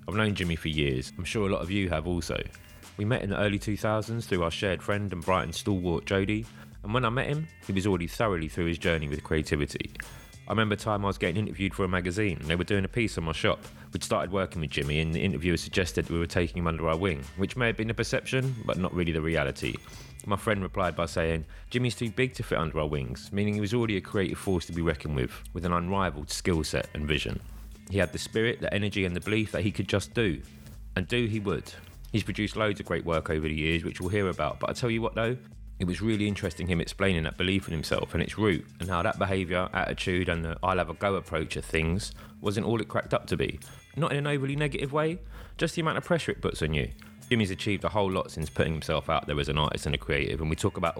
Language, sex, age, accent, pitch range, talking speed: English, male, 30-49, British, 80-105 Hz, 265 wpm